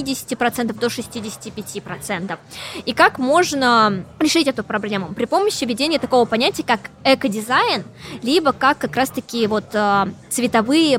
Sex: female